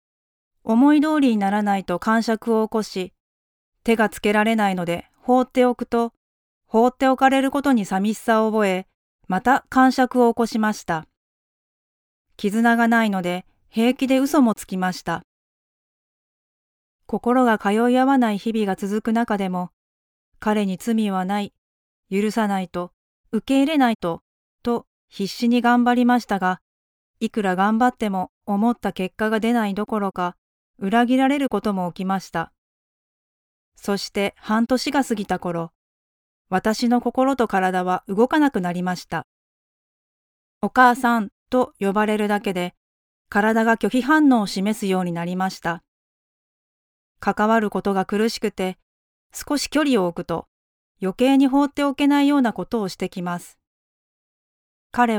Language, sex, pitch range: Japanese, female, 185-240 Hz